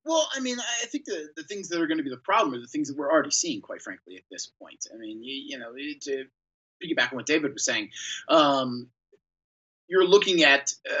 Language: English